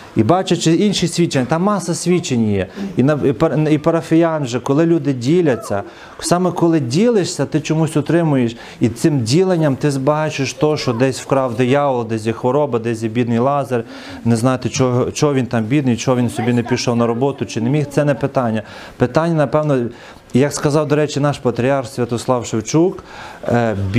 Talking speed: 165 wpm